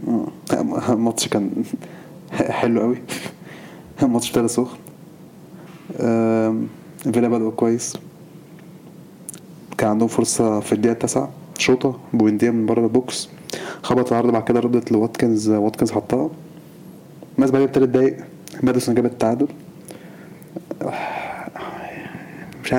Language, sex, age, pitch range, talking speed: Arabic, male, 20-39, 120-170 Hz, 100 wpm